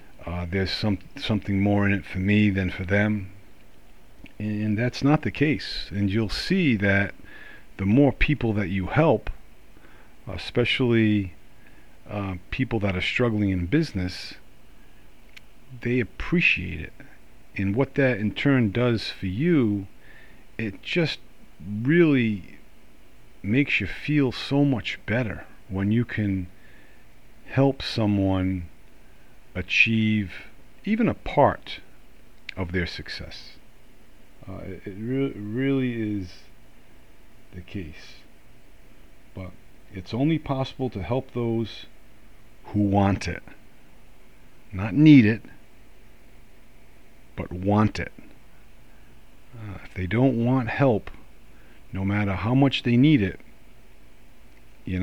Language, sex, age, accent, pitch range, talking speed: English, male, 50-69, American, 95-125 Hz, 115 wpm